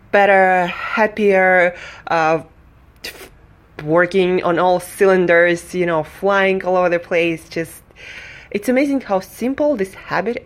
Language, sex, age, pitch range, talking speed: English, female, 20-39, 160-195 Hz, 115 wpm